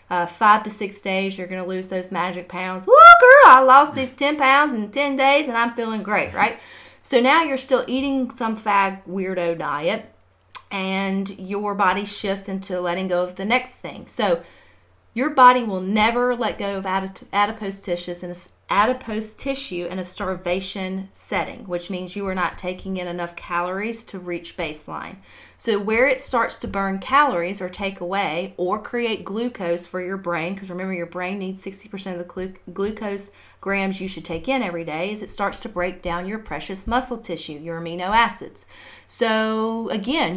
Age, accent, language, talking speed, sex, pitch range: 40-59, American, English, 185 wpm, female, 180-230 Hz